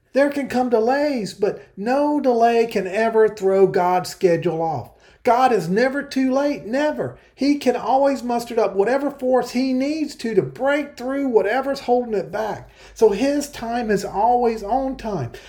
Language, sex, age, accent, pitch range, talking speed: English, male, 40-59, American, 180-245 Hz, 165 wpm